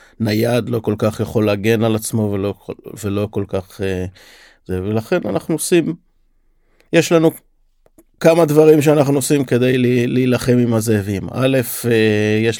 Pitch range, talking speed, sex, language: 100-115 Hz, 135 wpm, male, Hebrew